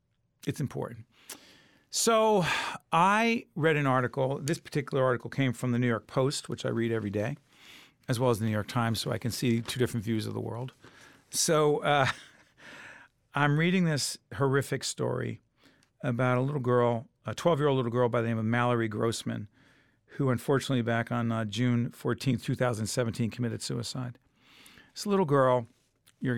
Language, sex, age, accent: English, male, 50-69, American